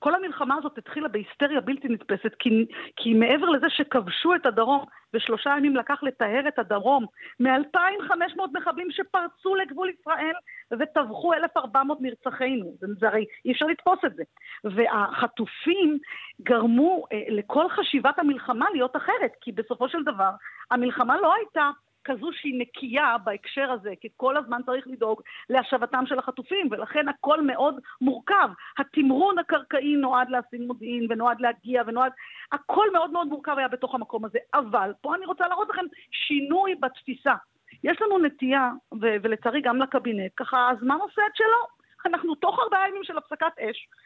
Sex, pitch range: female, 245-345 Hz